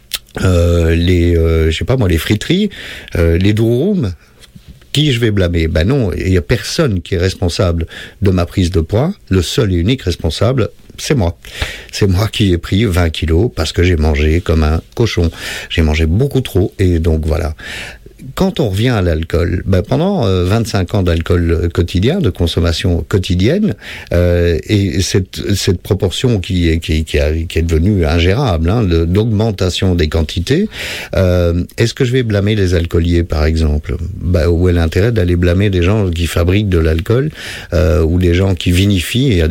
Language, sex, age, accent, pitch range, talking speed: French, male, 50-69, French, 85-105 Hz, 185 wpm